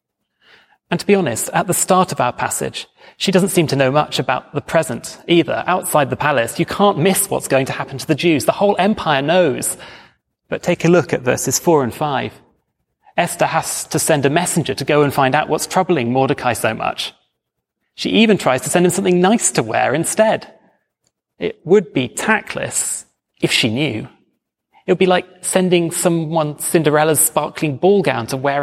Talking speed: 195 wpm